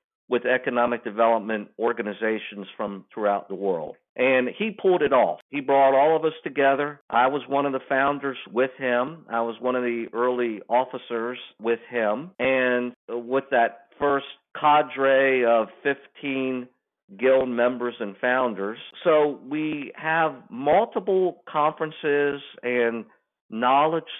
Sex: male